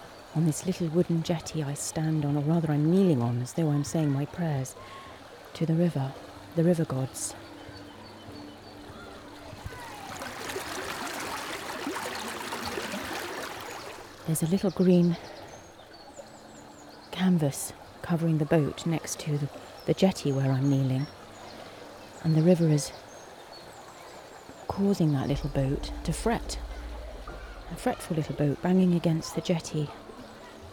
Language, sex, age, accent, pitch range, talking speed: English, female, 30-49, British, 145-185 Hz, 115 wpm